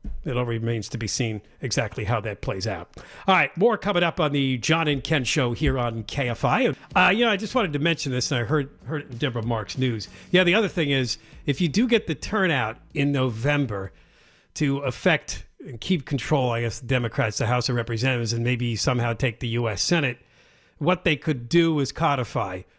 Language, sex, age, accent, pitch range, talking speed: English, male, 50-69, American, 115-155 Hz, 215 wpm